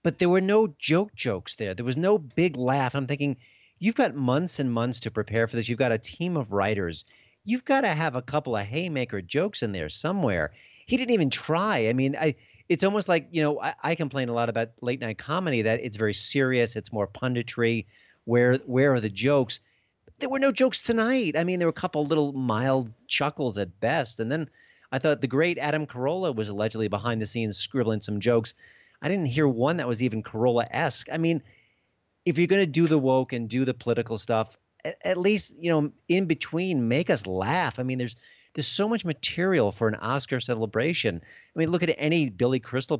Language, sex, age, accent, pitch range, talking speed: English, male, 40-59, American, 115-160 Hz, 220 wpm